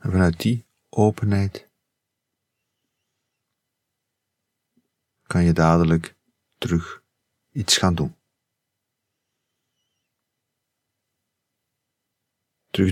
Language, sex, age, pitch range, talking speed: Dutch, male, 50-69, 90-115 Hz, 55 wpm